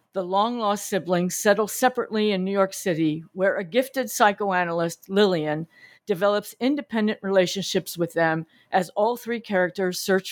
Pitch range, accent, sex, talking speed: 170-205 Hz, American, female, 145 wpm